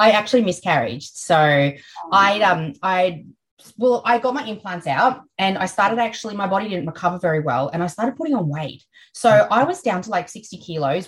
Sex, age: female, 20-39